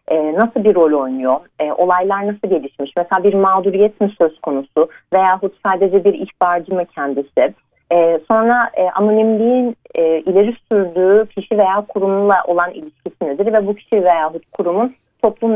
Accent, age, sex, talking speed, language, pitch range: native, 40-59, female, 155 wpm, Turkish, 170-215 Hz